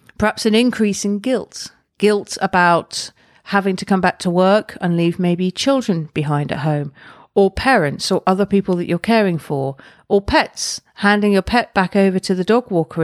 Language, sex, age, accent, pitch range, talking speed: English, female, 40-59, British, 165-205 Hz, 185 wpm